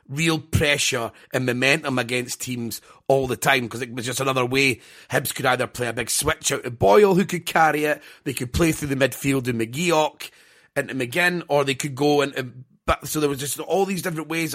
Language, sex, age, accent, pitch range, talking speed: English, male, 30-49, British, 125-150 Hz, 220 wpm